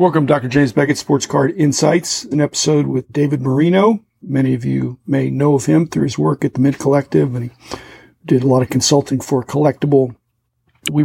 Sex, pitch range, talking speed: male, 130-150 Hz, 195 wpm